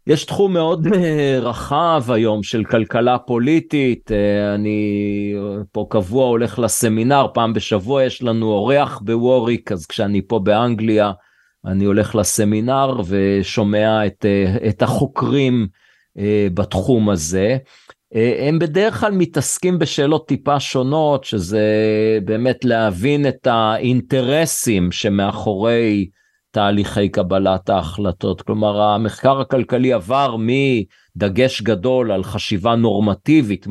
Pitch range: 105-130 Hz